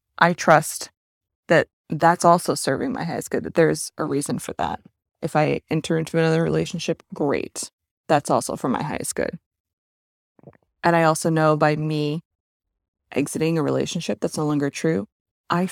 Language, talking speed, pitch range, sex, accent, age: English, 160 wpm, 145-175 Hz, female, American, 20-39